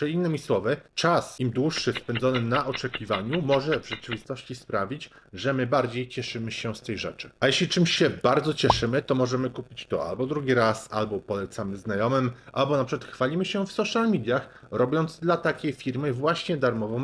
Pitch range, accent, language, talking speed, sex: 115-150 Hz, native, Polish, 180 wpm, male